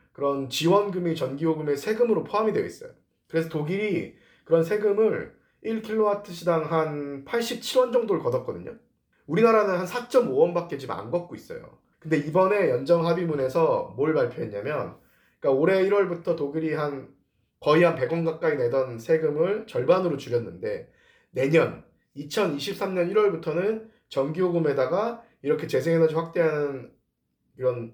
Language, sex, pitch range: Korean, male, 165-250 Hz